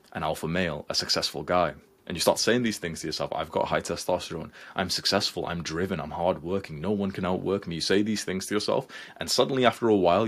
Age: 20-39